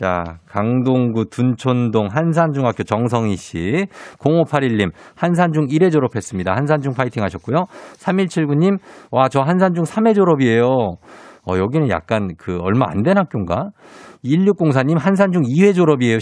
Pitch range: 115-175 Hz